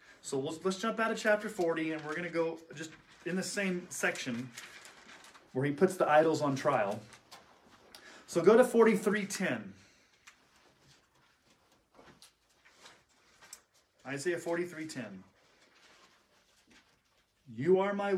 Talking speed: 110 wpm